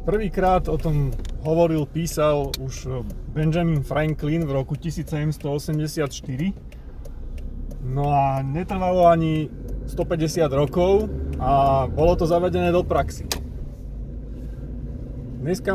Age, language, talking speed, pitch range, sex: 30-49, Slovak, 90 wpm, 130-165 Hz, male